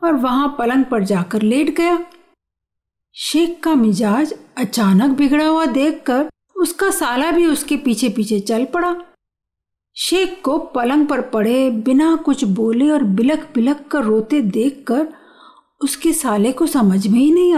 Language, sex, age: Hindi, female, 50-69